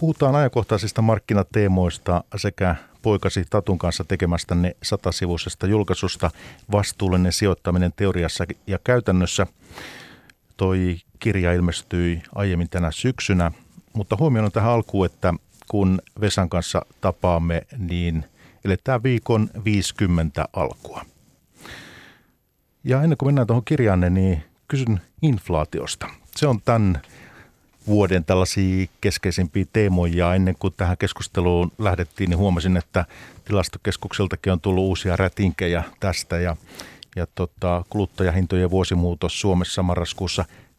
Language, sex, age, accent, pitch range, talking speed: Finnish, male, 50-69, native, 90-105 Hz, 105 wpm